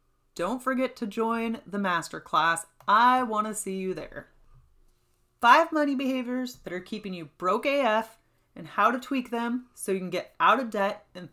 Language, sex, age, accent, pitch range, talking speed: English, female, 30-49, American, 185-250 Hz, 180 wpm